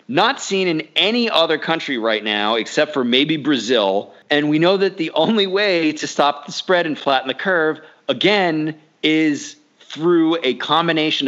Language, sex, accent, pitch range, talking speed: English, male, American, 130-175 Hz, 170 wpm